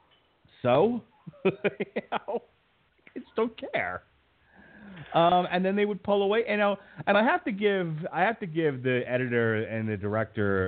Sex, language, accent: male, English, American